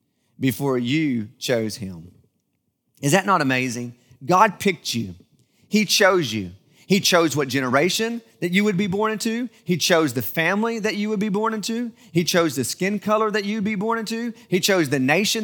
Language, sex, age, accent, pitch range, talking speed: English, male, 30-49, American, 145-210 Hz, 185 wpm